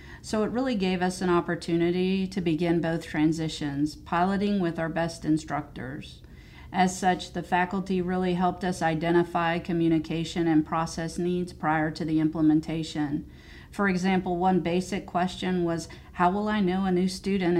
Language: English